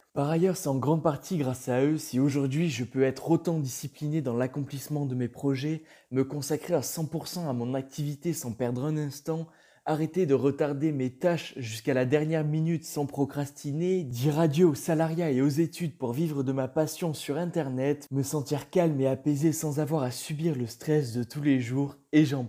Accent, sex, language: French, male, French